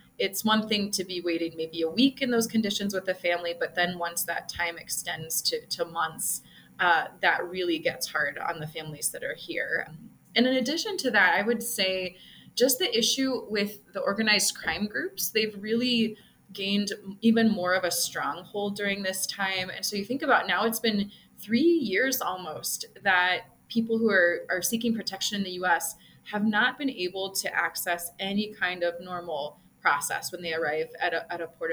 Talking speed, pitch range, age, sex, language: 190 wpm, 175-230 Hz, 20-39, female, English